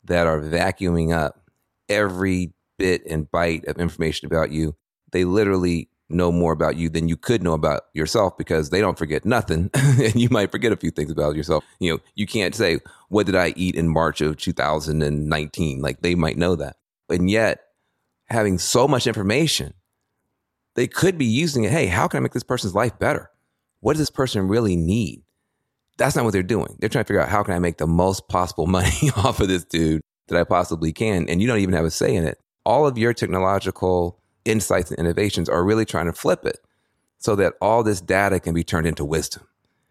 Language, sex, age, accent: English, male, 30-49, American